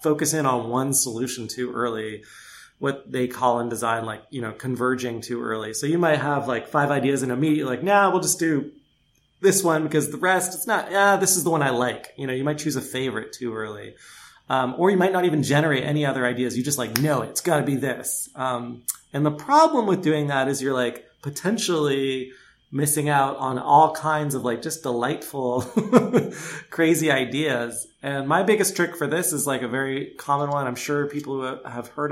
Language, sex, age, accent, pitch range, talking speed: English, male, 20-39, American, 125-160 Hz, 215 wpm